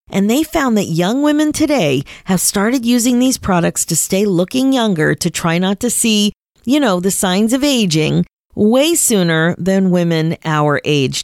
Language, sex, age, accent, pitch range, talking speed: English, female, 40-59, American, 170-255 Hz, 175 wpm